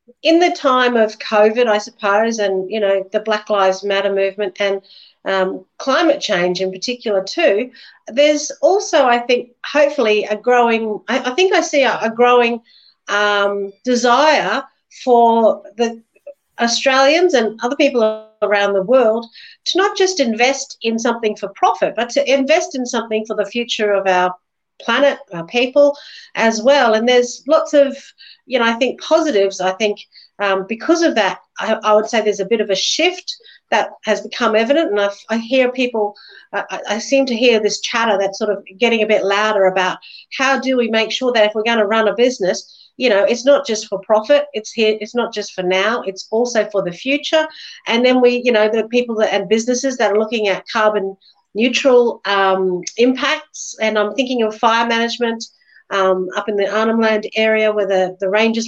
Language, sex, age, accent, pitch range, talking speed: English, female, 50-69, Australian, 200-250 Hz, 190 wpm